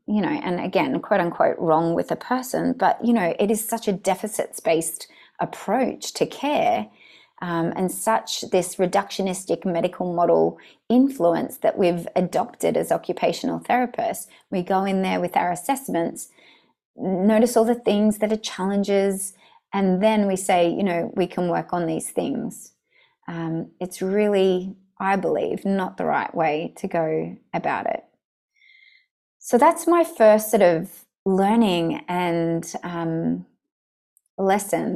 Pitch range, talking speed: 175-230 Hz, 145 wpm